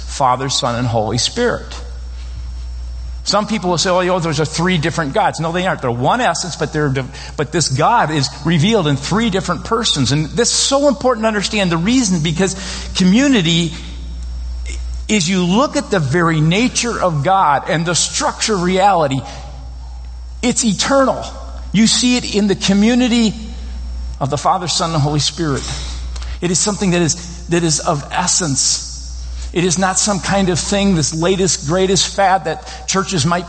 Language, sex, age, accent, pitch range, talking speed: English, male, 50-69, American, 140-200 Hz, 170 wpm